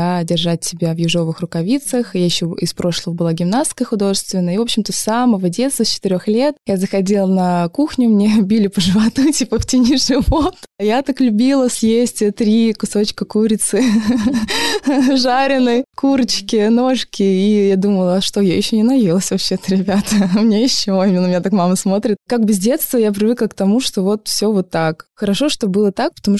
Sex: female